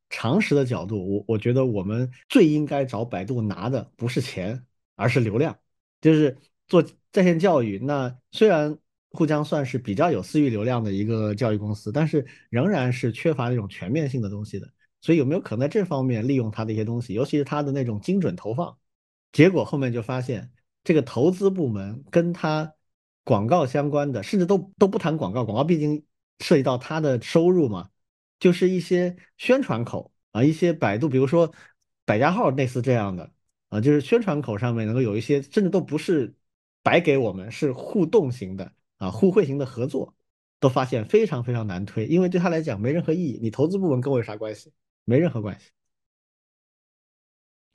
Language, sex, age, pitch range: Chinese, male, 50-69, 115-160 Hz